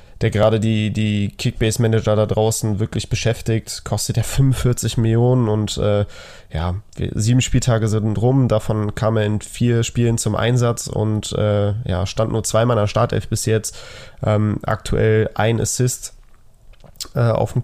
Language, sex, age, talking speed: German, male, 20-39, 155 wpm